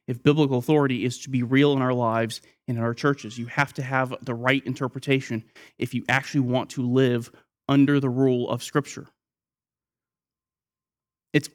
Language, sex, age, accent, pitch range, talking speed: English, male, 30-49, American, 130-165 Hz, 170 wpm